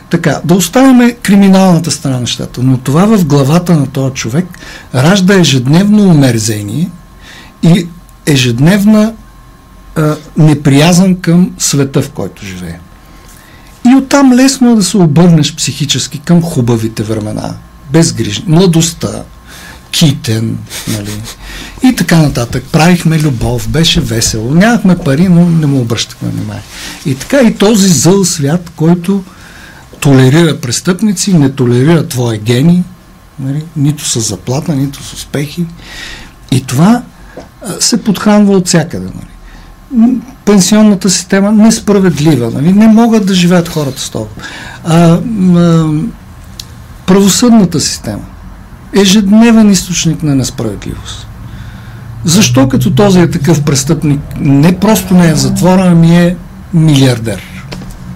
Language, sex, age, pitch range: Bulgarian, male, 60-79, 130-185 Hz